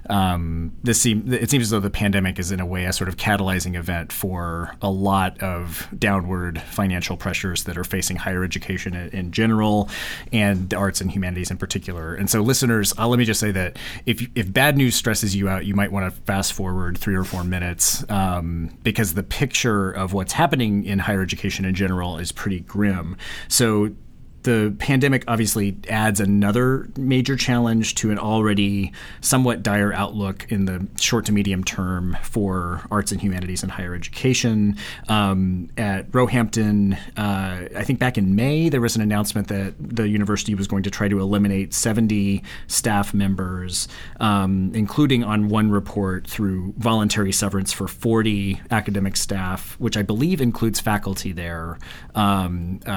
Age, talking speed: 30-49, 170 wpm